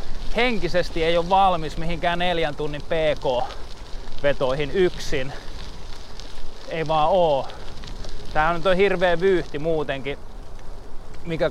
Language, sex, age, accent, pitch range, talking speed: Finnish, male, 20-39, native, 145-190 Hz, 100 wpm